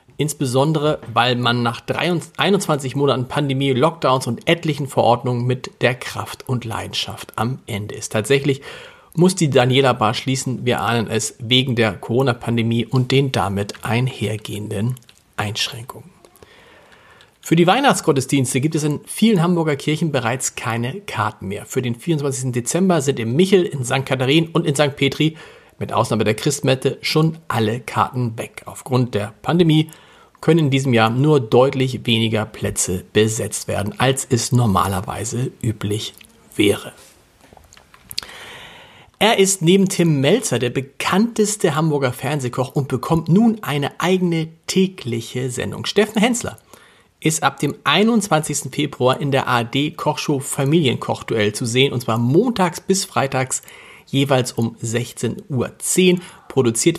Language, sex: German, male